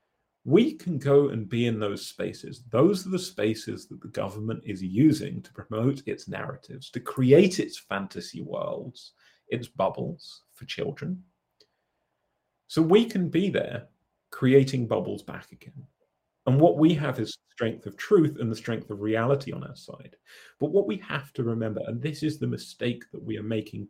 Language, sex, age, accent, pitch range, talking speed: English, male, 30-49, British, 110-155 Hz, 175 wpm